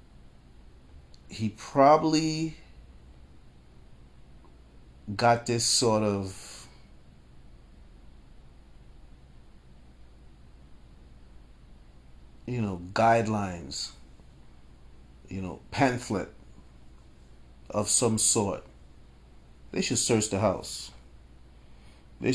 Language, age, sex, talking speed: English, 40-59, male, 55 wpm